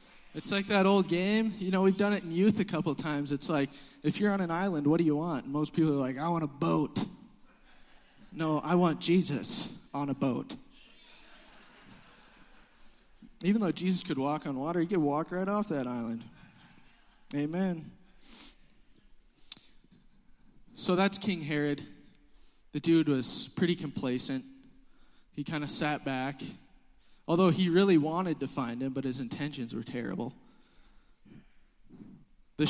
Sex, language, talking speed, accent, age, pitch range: male, English, 150 wpm, American, 20-39, 150-195 Hz